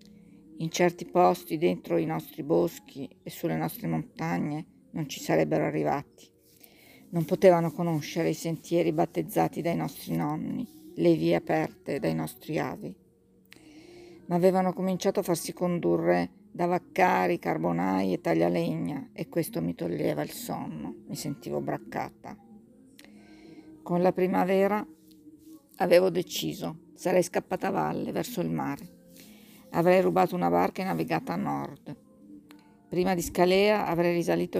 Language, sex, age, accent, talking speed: Italian, female, 50-69, native, 130 wpm